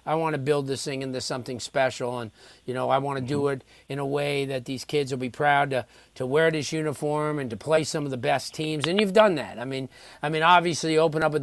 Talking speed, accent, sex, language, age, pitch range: 275 wpm, American, male, English, 40-59, 140-170 Hz